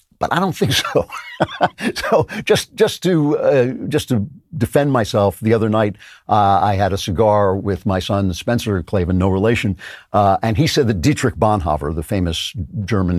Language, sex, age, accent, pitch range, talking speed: English, male, 50-69, American, 95-125 Hz, 175 wpm